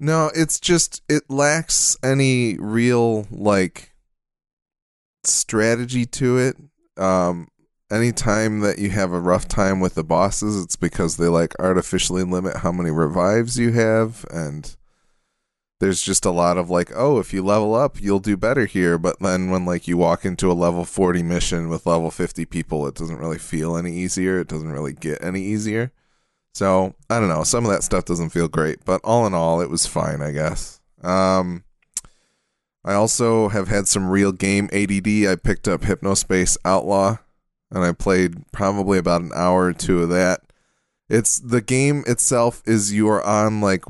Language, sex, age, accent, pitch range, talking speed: English, male, 20-39, American, 90-105 Hz, 180 wpm